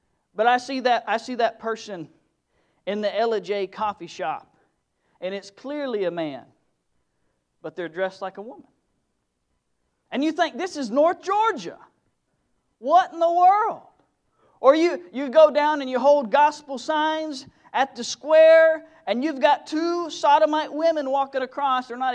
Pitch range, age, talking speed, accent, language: 175-275 Hz, 40-59, 160 wpm, American, English